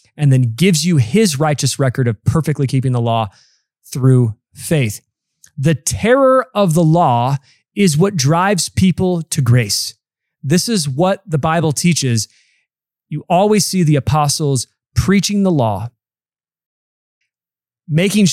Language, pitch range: English, 130-175 Hz